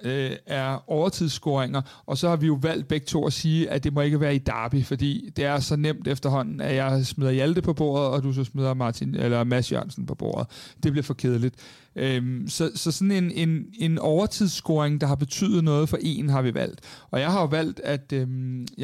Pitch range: 135-165 Hz